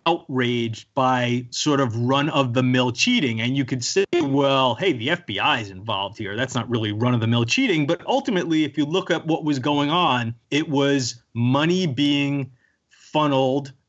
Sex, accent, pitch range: male, American, 130-170 Hz